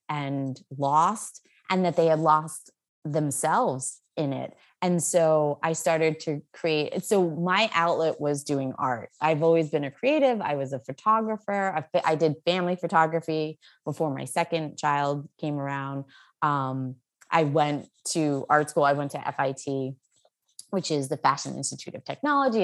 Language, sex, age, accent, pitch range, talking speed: English, female, 20-39, American, 145-185 Hz, 155 wpm